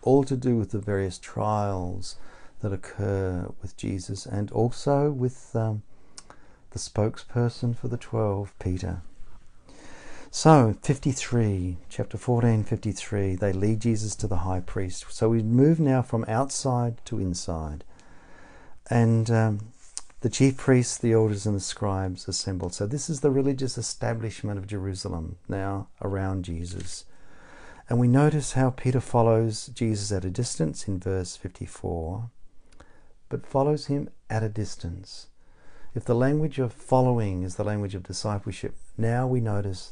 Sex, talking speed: male, 145 wpm